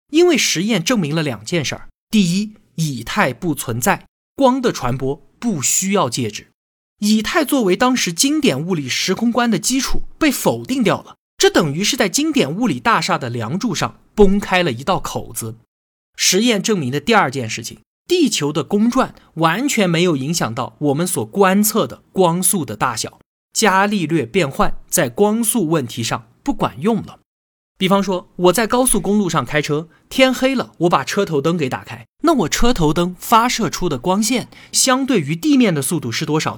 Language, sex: Chinese, male